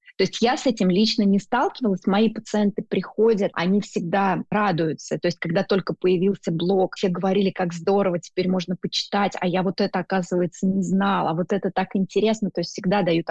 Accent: native